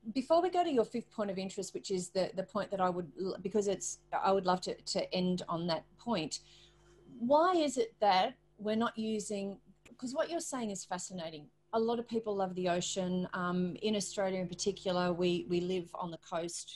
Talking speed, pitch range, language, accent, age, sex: 210 wpm, 175-210 Hz, English, Australian, 30-49, female